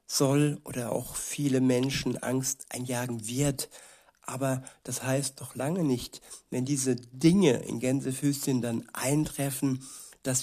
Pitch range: 125-140 Hz